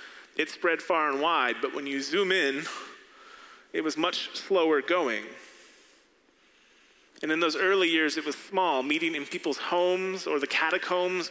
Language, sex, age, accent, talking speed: English, male, 30-49, American, 160 wpm